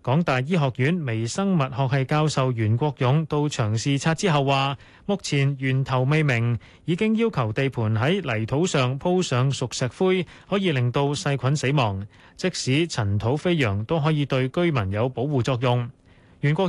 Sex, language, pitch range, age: male, Chinese, 120-160 Hz, 20-39